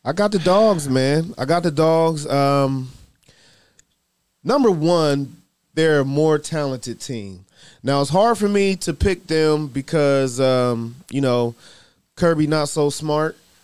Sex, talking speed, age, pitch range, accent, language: male, 145 wpm, 20-39, 140-185 Hz, American, English